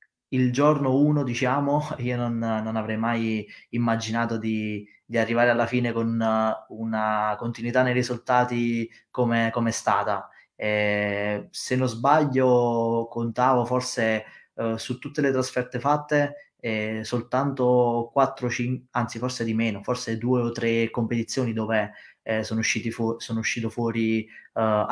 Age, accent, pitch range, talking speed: 20-39, native, 110-125 Hz, 130 wpm